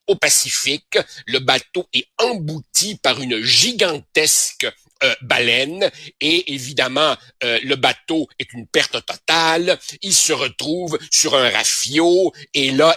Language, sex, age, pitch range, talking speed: French, male, 60-79, 140-190 Hz, 130 wpm